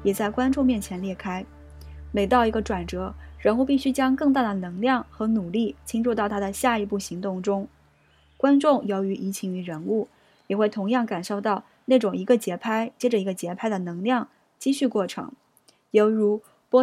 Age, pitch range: 20-39, 200-255 Hz